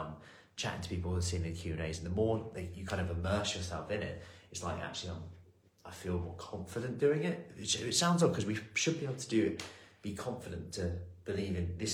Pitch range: 85-100 Hz